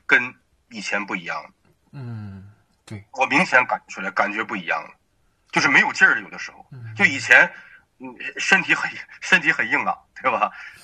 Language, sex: Chinese, male